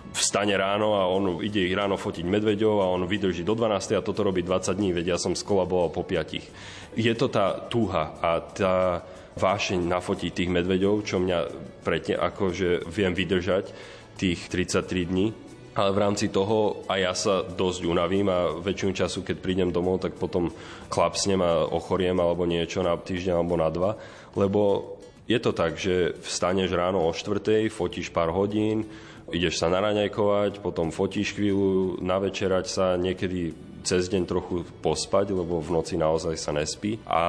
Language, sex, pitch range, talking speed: Slovak, male, 90-100 Hz, 165 wpm